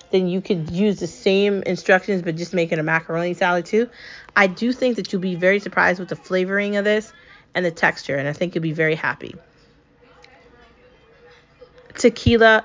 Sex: female